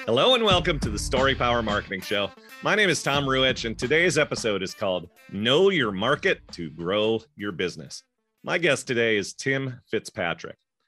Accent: American